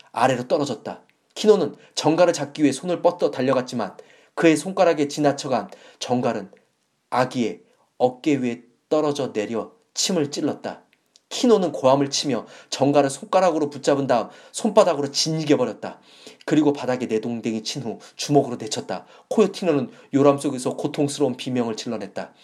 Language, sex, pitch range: Korean, male, 130-155 Hz